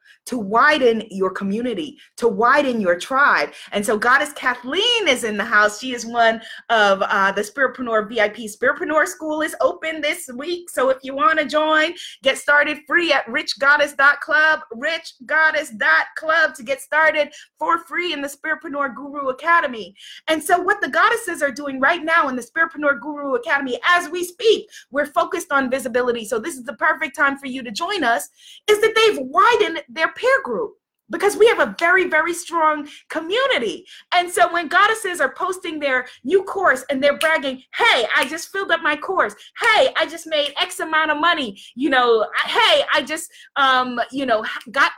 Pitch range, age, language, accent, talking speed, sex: 245-340 Hz, 30-49, English, American, 180 wpm, female